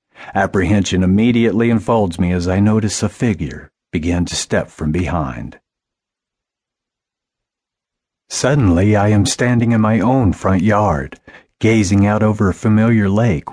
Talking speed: 130 wpm